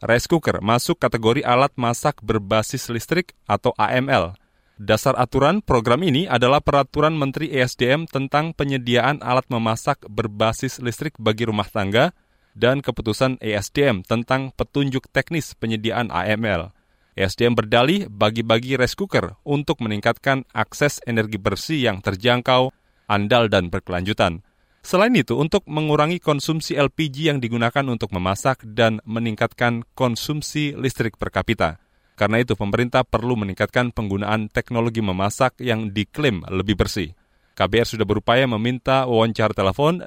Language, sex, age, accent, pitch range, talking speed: Indonesian, male, 30-49, native, 110-135 Hz, 125 wpm